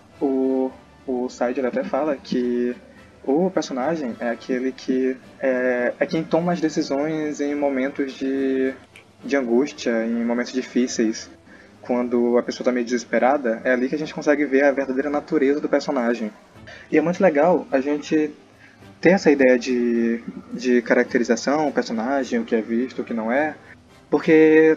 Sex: male